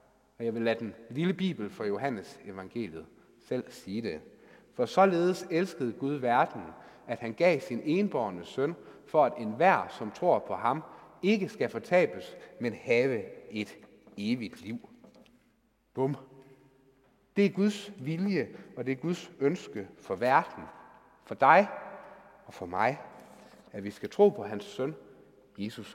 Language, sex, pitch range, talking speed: Danish, male, 120-185 Hz, 150 wpm